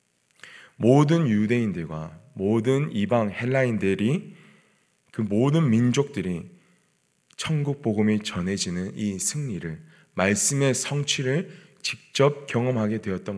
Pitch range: 110-175 Hz